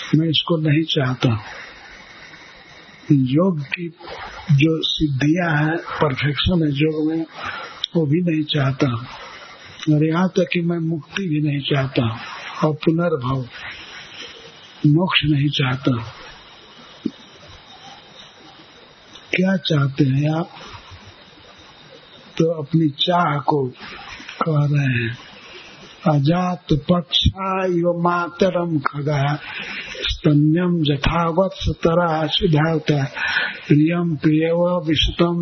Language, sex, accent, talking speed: Hindi, male, native, 85 wpm